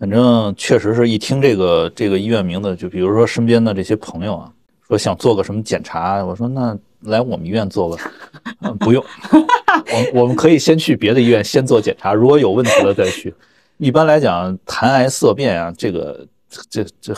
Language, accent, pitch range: Chinese, native, 95-125 Hz